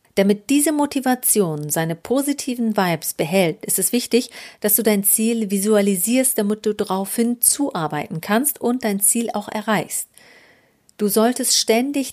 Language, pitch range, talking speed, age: German, 195-235 Hz, 140 wpm, 40-59